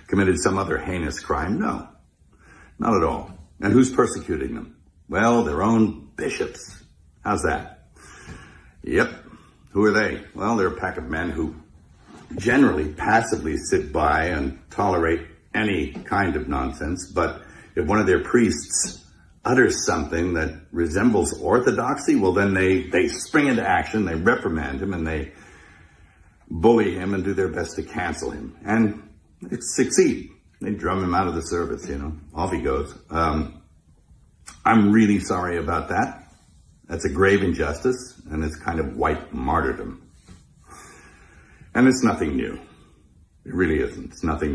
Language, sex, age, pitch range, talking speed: Spanish, male, 60-79, 80-105 Hz, 150 wpm